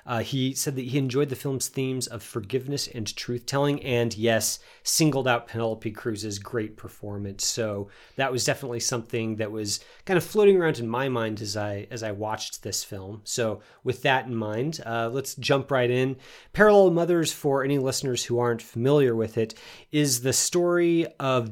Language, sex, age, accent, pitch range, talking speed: English, male, 30-49, American, 110-140 Hz, 185 wpm